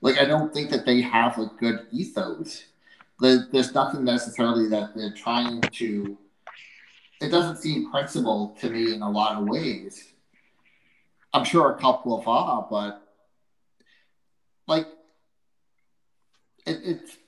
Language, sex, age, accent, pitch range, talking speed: English, male, 30-49, American, 115-145 Hz, 130 wpm